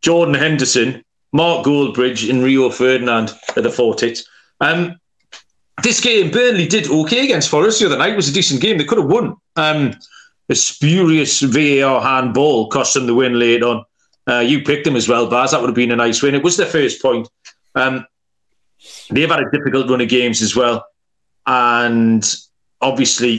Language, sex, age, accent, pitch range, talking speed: English, male, 40-59, British, 130-175 Hz, 185 wpm